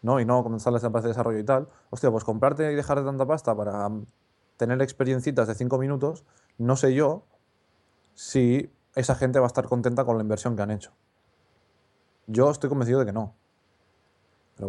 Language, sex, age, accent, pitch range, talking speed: Spanish, male, 20-39, Spanish, 110-135 Hz, 190 wpm